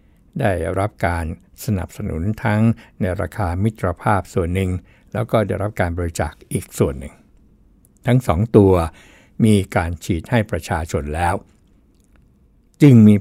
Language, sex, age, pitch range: Thai, male, 60-79, 85-110 Hz